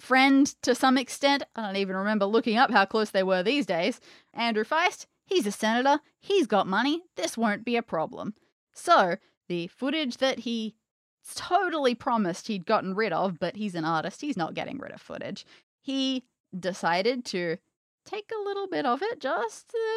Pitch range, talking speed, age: 195-280 Hz, 180 wpm, 30-49